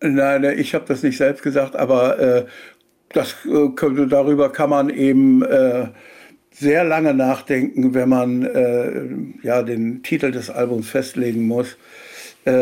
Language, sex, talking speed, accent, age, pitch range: German, male, 140 wpm, German, 60-79, 125-150 Hz